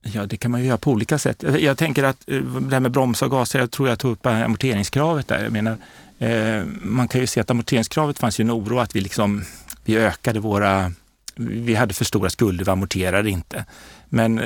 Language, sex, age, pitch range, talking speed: Swedish, male, 30-49, 100-120 Hz, 220 wpm